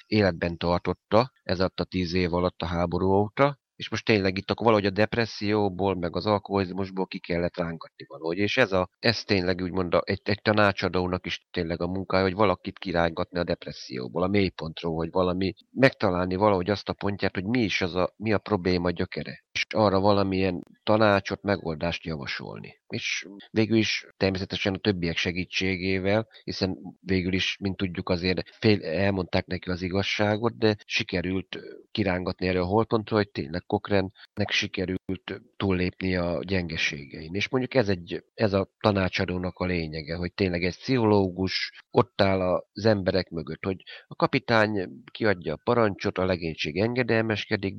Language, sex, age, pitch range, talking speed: Hungarian, male, 30-49, 90-105 Hz, 155 wpm